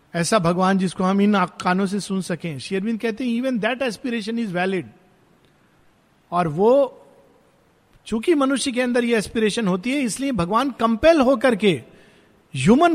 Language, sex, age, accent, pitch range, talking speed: Hindi, male, 50-69, native, 175-235 Hz, 155 wpm